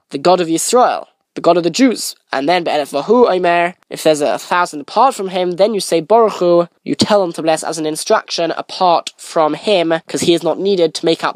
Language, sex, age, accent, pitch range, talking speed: English, male, 10-29, British, 165-210 Hz, 210 wpm